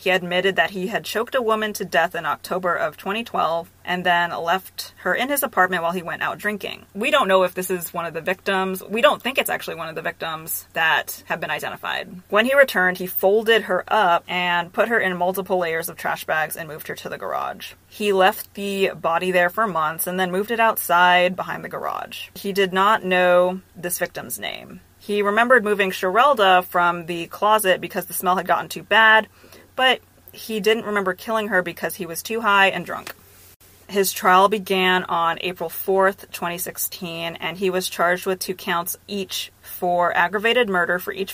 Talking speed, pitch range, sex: 205 wpm, 175-200 Hz, female